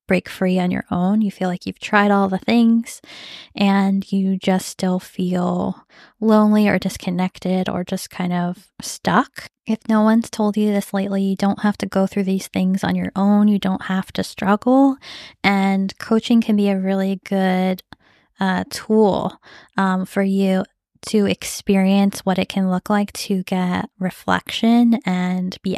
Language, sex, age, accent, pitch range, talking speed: English, female, 10-29, American, 185-210 Hz, 170 wpm